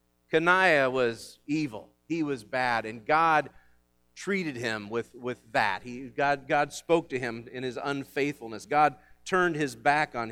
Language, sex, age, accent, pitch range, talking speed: English, male, 40-59, American, 130-200 Hz, 155 wpm